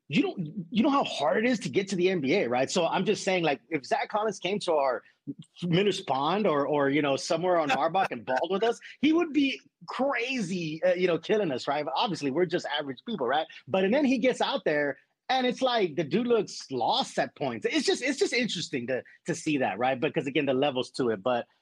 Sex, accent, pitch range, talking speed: male, American, 140-180 Hz, 240 wpm